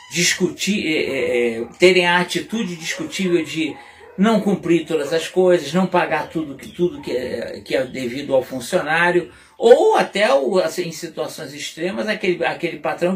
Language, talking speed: Portuguese, 155 wpm